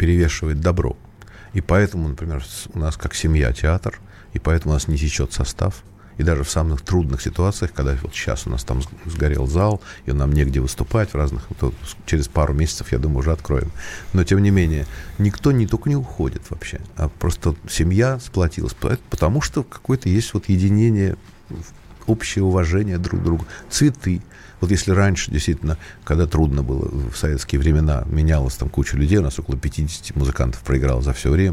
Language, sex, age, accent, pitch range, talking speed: Russian, male, 50-69, native, 75-105 Hz, 175 wpm